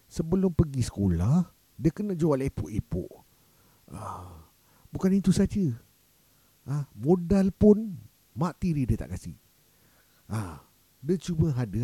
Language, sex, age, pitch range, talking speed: Malay, male, 50-69, 110-165 Hz, 115 wpm